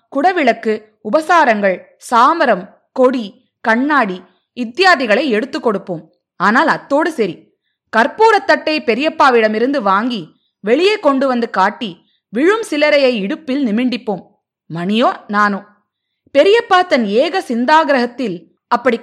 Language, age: Tamil, 20-39